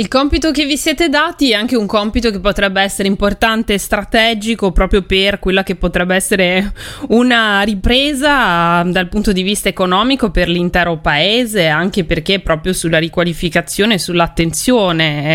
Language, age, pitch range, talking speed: Italian, 20-39, 170-205 Hz, 155 wpm